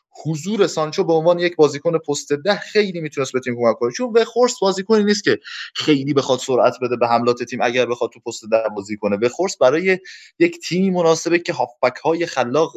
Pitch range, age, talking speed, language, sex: 130-180 Hz, 20-39, 195 wpm, Persian, male